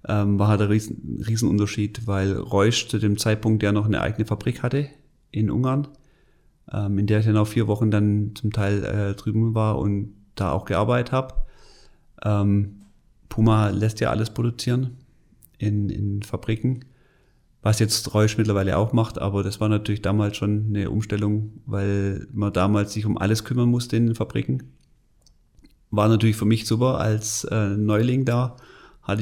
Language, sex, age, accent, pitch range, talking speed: German, male, 30-49, German, 100-115 Hz, 170 wpm